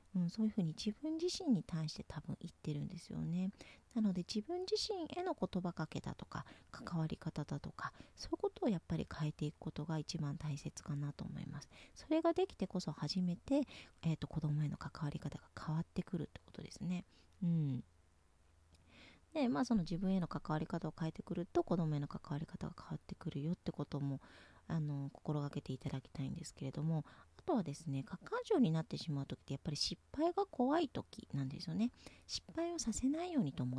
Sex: female